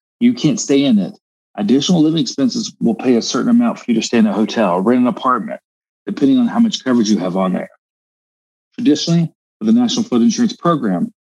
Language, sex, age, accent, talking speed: English, male, 40-59, American, 210 wpm